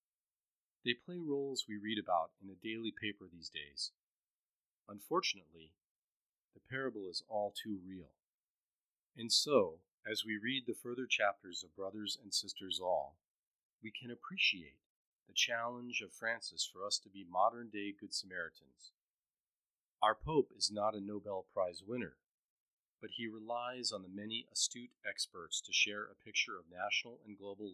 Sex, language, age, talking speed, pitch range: male, English, 40-59, 150 wpm, 95-115 Hz